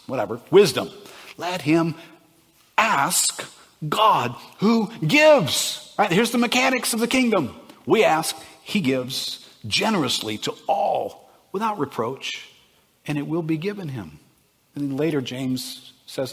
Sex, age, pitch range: male, 50-69, 115-150 Hz